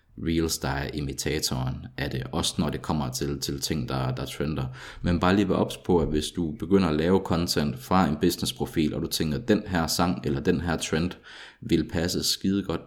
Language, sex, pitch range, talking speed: Danish, male, 70-85 Hz, 215 wpm